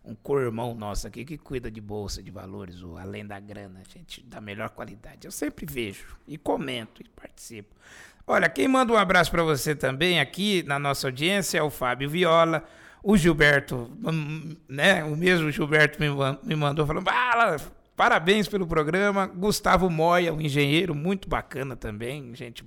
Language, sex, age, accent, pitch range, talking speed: Portuguese, male, 60-79, Brazilian, 130-170 Hz, 165 wpm